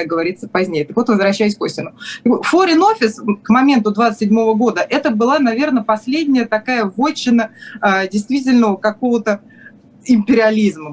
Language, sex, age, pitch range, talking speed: Russian, female, 20-39, 200-240 Hz, 120 wpm